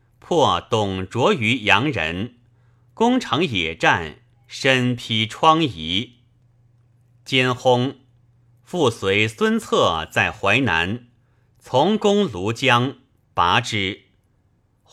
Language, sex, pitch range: Chinese, male, 110-130 Hz